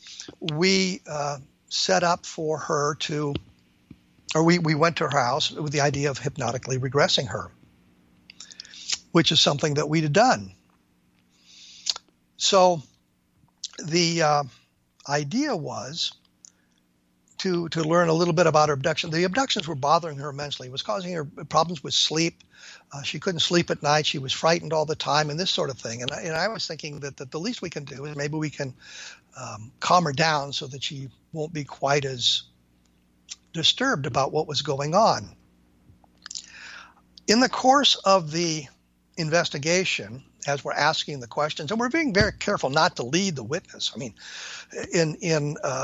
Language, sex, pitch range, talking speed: English, male, 125-170 Hz, 175 wpm